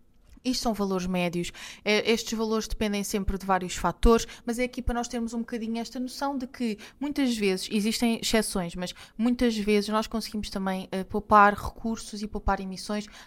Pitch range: 190-230 Hz